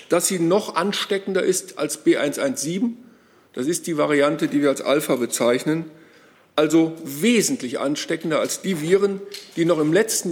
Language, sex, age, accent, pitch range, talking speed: German, male, 50-69, German, 160-245 Hz, 150 wpm